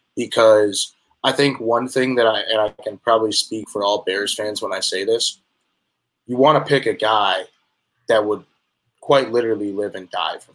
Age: 20-39